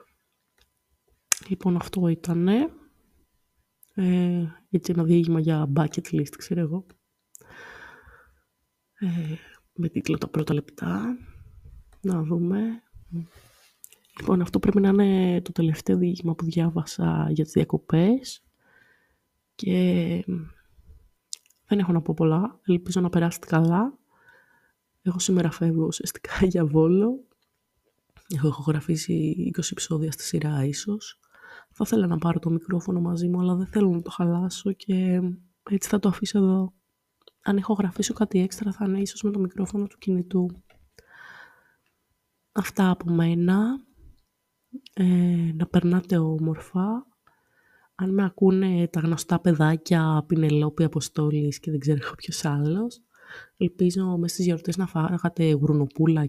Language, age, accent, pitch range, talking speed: Greek, 20-39, native, 160-195 Hz, 125 wpm